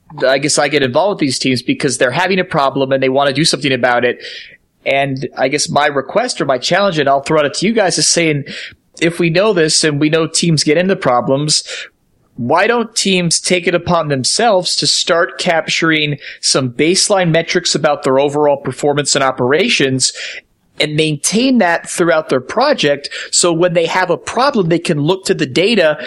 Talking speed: 200 wpm